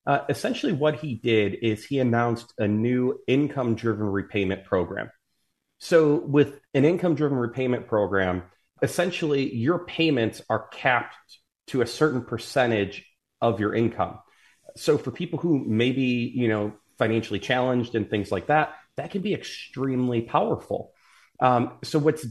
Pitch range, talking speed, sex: 100-125 Hz, 150 wpm, male